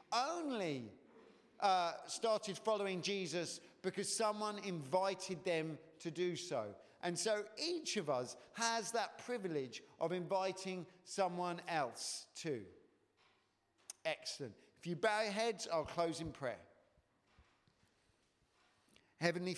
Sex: male